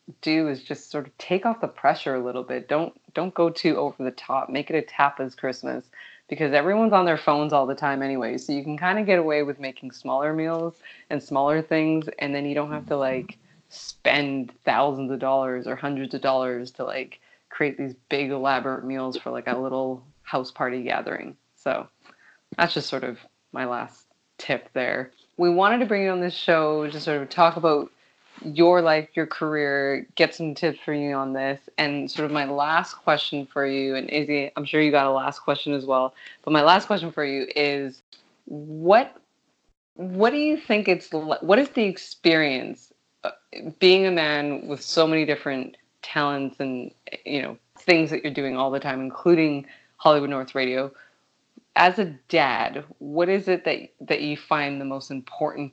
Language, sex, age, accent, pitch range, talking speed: English, female, 20-39, American, 135-160 Hz, 195 wpm